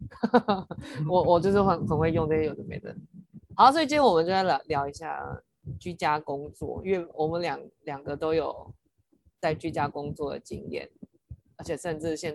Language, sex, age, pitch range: Chinese, female, 20-39, 150-185 Hz